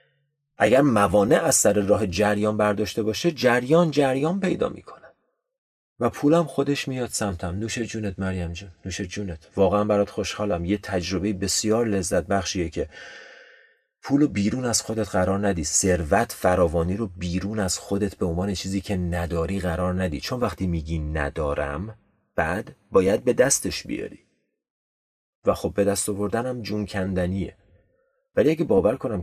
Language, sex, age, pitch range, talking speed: Persian, male, 30-49, 90-115 Hz, 150 wpm